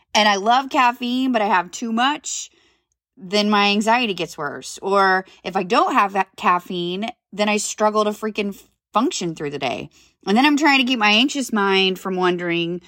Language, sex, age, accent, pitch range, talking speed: English, female, 20-39, American, 175-220 Hz, 190 wpm